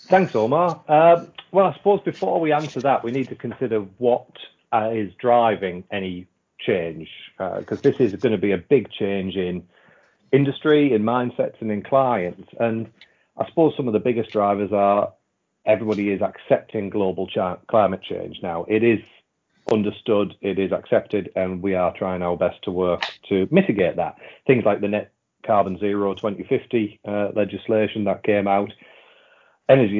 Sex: male